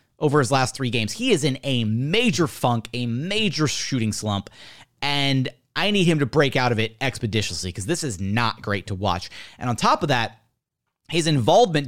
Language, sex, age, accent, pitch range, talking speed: English, male, 30-49, American, 135-200 Hz, 195 wpm